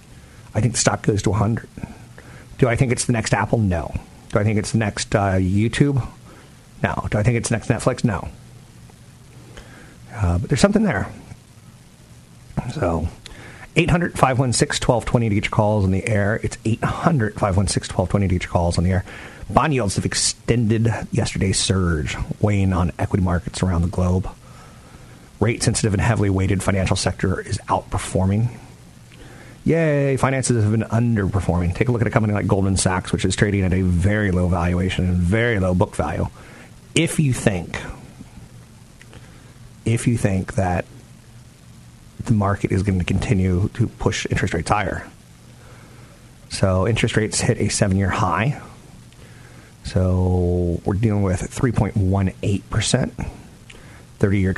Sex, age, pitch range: male, 40-59, 95-120 Hz